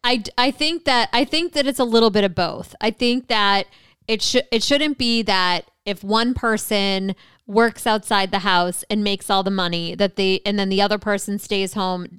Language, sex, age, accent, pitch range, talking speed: English, female, 20-39, American, 195-235 Hz, 210 wpm